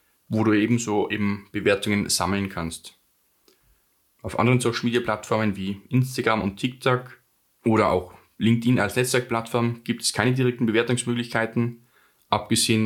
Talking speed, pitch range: 125 wpm, 100-120 Hz